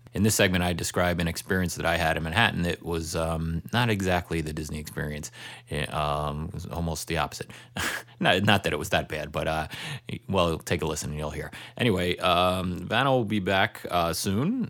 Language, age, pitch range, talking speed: English, 30-49, 85-105 Hz, 205 wpm